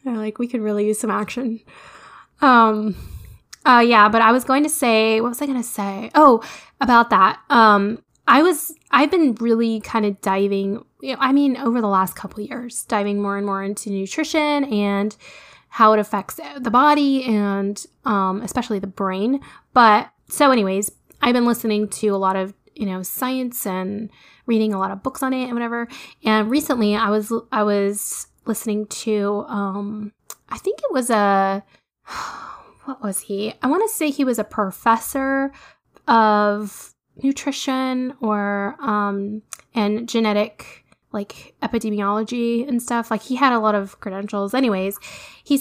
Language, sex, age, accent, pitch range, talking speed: English, female, 10-29, American, 205-260 Hz, 165 wpm